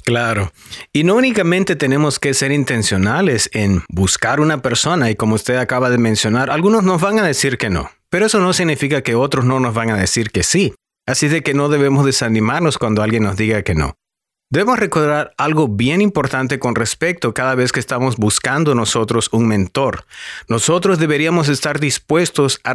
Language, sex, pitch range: English, male, 115-145 Hz